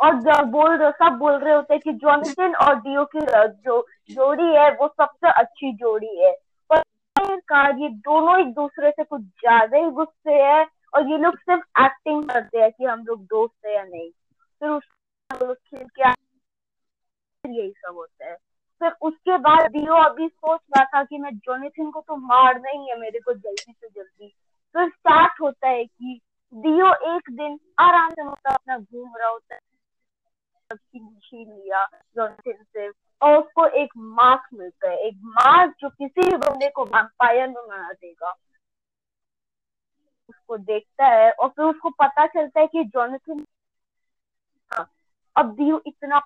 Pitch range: 235-310 Hz